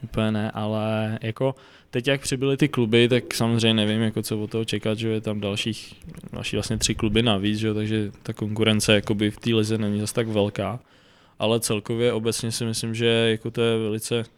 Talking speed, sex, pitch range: 205 wpm, male, 100-115 Hz